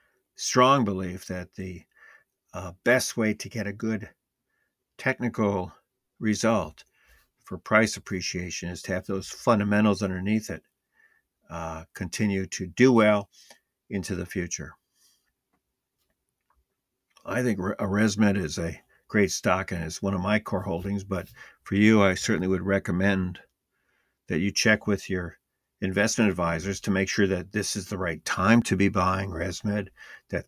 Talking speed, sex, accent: 145 wpm, male, American